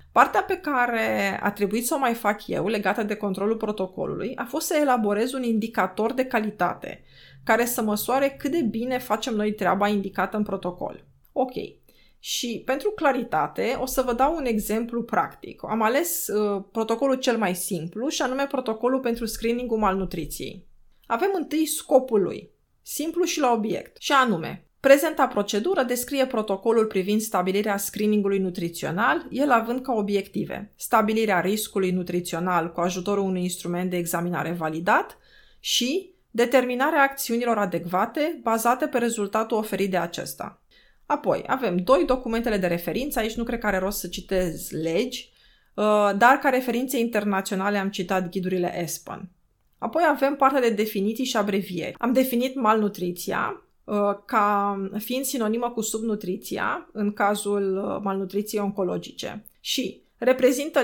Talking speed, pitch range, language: 140 wpm, 195-255 Hz, Romanian